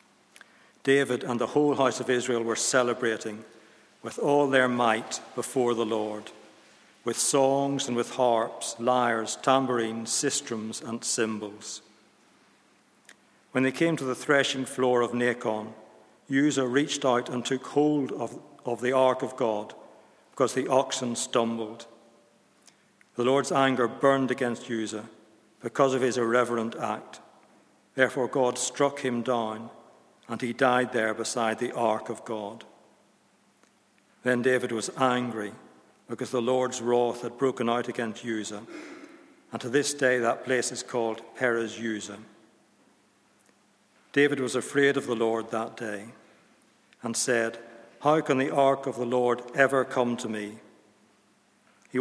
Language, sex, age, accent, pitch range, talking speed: English, male, 60-79, British, 115-130 Hz, 140 wpm